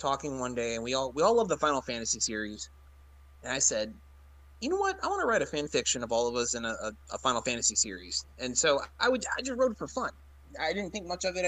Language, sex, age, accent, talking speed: English, male, 30-49, American, 275 wpm